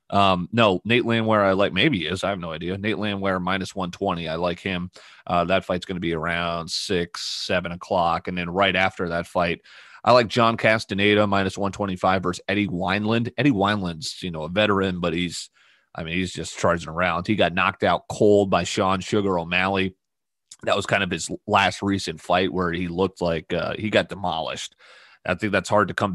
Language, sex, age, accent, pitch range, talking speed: English, male, 30-49, American, 90-105 Hz, 205 wpm